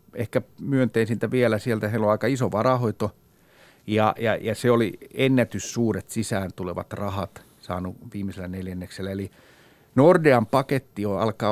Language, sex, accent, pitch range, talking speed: Finnish, male, native, 100-120 Hz, 135 wpm